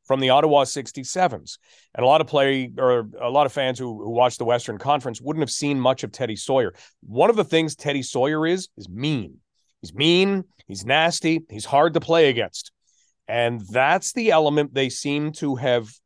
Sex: male